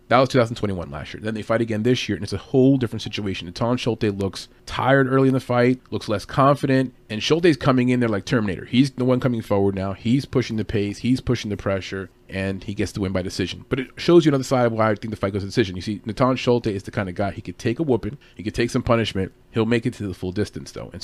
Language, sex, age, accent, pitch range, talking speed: English, male, 30-49, American, 100-130 Hz, 280 wpm